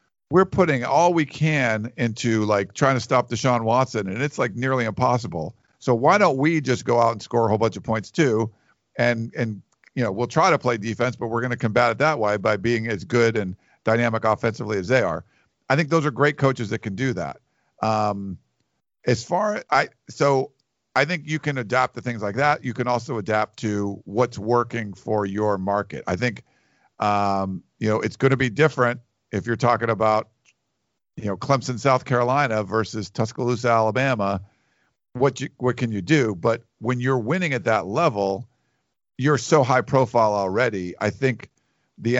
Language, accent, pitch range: English, American, 110-130 Hz